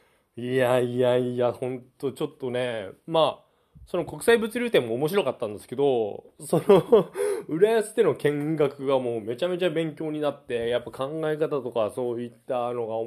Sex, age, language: male, 20-39, Japanese